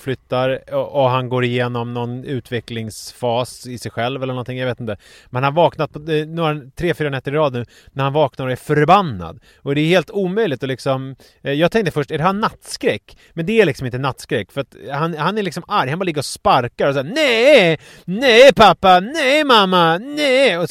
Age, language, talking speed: 30-49, English, 215 wpm